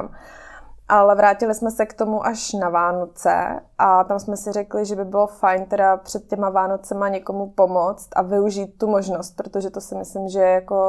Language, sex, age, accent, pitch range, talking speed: Czech, female, 20-39, native, 190-205 Hz, 195 wpm